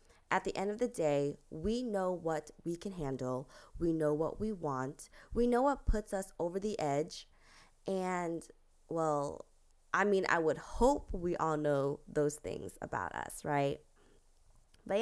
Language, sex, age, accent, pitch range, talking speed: English, female, 20-39, American, 145-190 Hz, 165 wpm